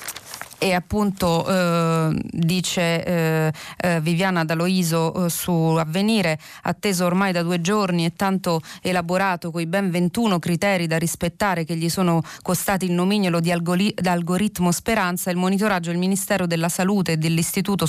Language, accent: Italian, native